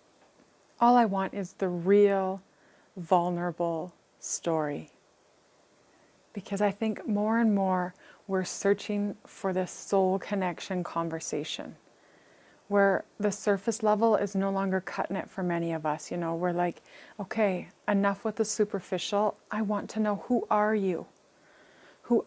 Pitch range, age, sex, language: 175-205 Hz, 30-49, female, English